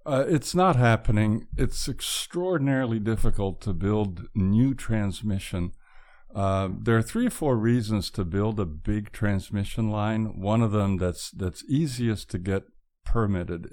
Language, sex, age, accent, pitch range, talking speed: English, male, 60-79, American, 95-120 Hz, 145 wpm